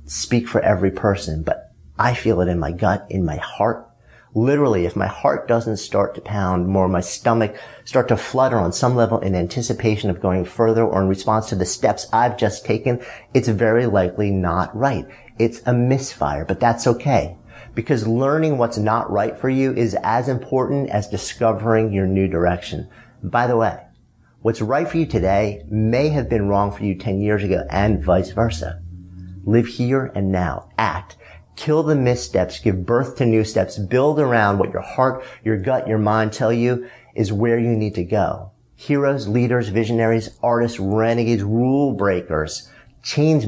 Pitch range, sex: 95-120 Hz, male